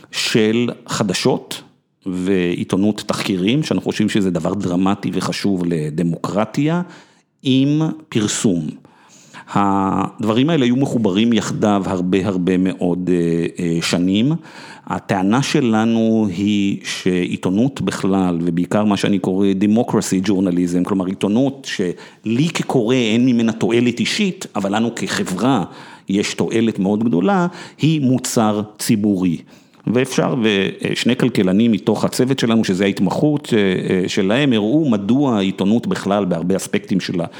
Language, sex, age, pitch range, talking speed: Hebrew, male, 50-69, 95-125 Hz, 110 wpm